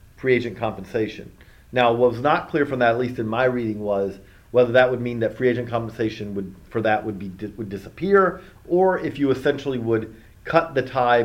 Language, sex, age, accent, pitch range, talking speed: English, male, 40-59, American, 105-140 Hz, 210 wpm